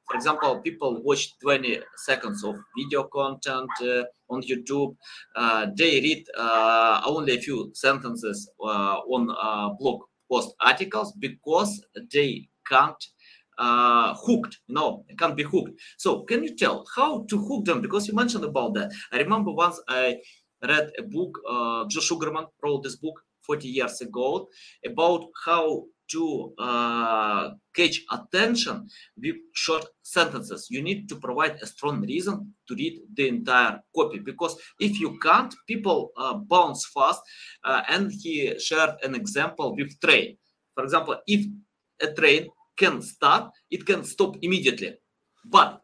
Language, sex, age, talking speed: English, male, 30-49, 150 wpm